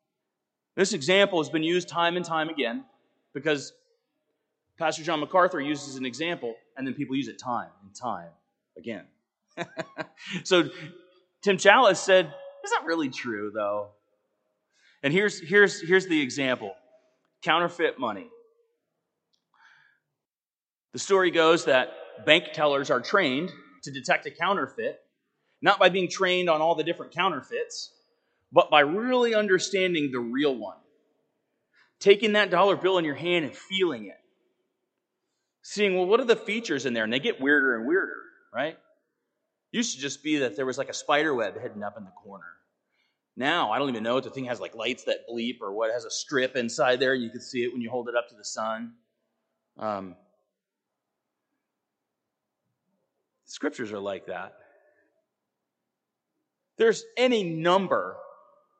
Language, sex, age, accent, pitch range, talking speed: English, male, 30-49, American, 140-210 Hz, 155 wpm